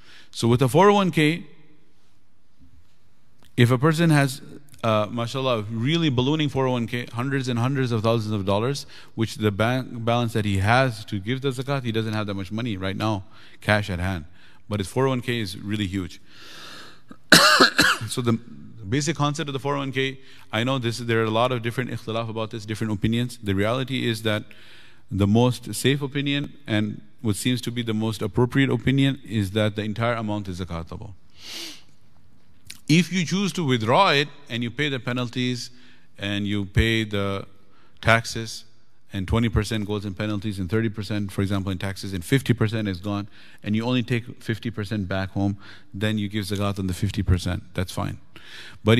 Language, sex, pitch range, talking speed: English, male, 105-125 Hz, 175 wpm